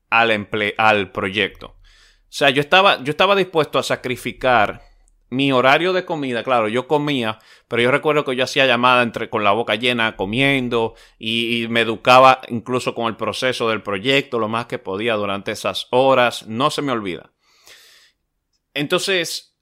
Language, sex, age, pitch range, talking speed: Spanish, male, 30-49, 115-145 Hz, 165 wpm